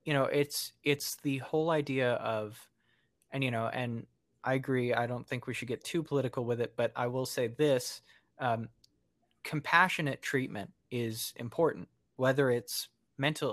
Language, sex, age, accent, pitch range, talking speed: English, male, 20-39, American, 115-135 Hz, 165 wpm